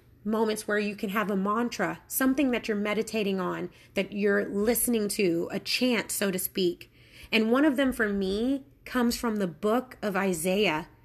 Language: English